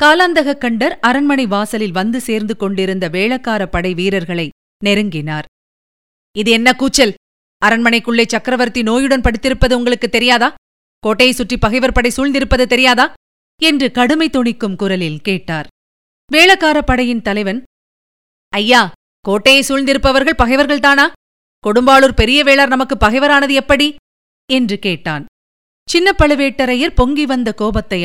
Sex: female